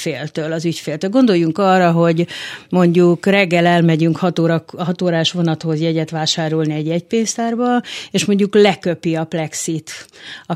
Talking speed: 125 wpm